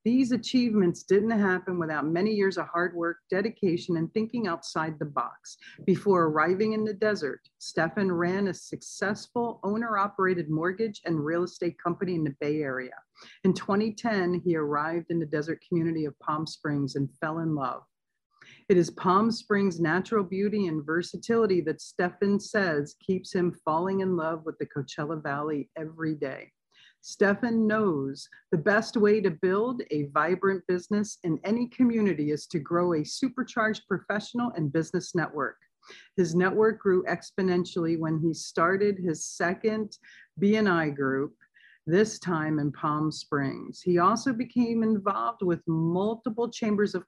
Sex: female